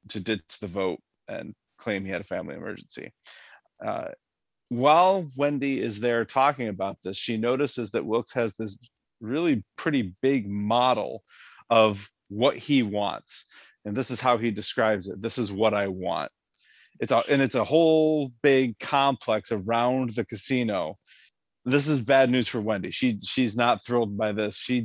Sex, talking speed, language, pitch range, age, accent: male, 165 wpm, English, 105-130 Hz, 30-49, American